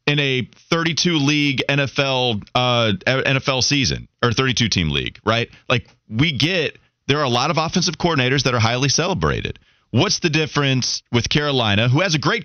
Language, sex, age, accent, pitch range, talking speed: English, male, 30-49, American, 105-145 Hz, 175 wpm